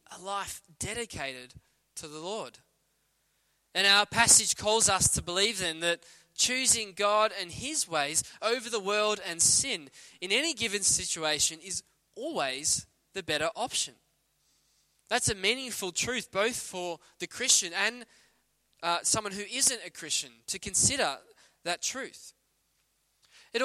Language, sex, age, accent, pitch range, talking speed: English, male, 20-39, Australian, 170-225 Hz, 135 wpm